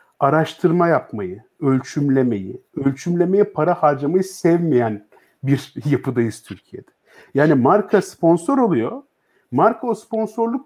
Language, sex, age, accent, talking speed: Turkish, male, 50-69, native, 95 wpm